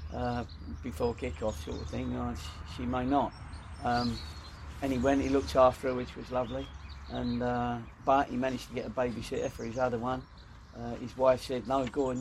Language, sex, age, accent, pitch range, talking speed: English, male, 50-69, British, 75-125 Hz, 210 wpm